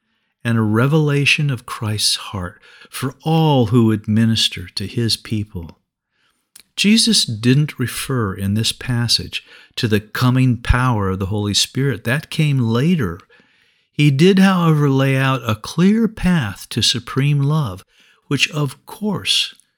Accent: American